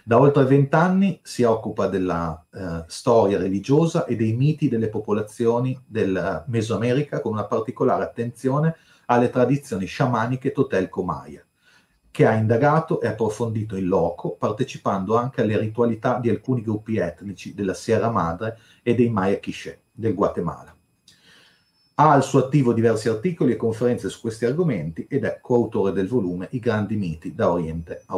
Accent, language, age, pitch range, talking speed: native, Italian, 40-59, 105-135 Hz, 155 wpm